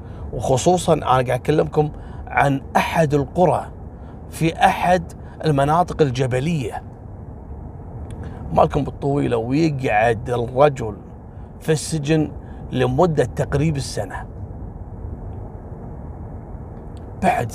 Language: Arabic